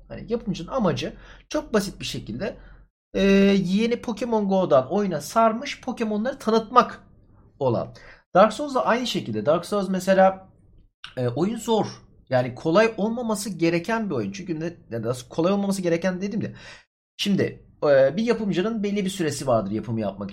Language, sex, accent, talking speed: Turkish, male, native, 150 wpm